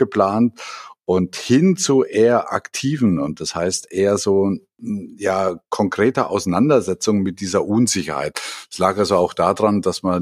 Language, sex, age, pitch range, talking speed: German, male, 50-69, 85-115 Hz, 140 wpm